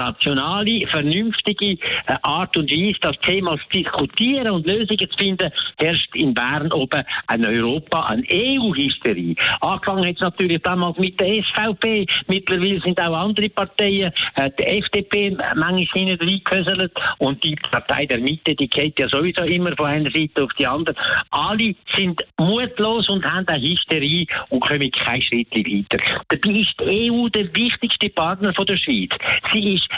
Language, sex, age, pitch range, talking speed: German, male, 60-79, 155-205 Hz, 160 wpm